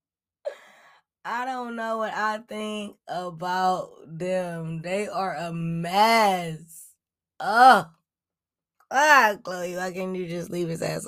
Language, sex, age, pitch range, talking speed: English, female, 20-39, 160-200 Hz, 120 wpm